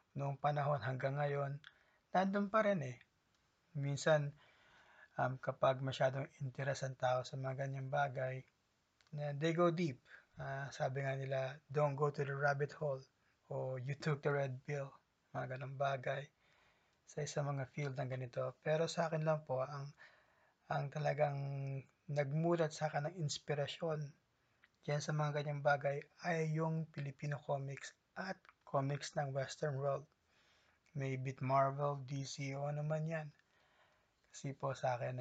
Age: 20-39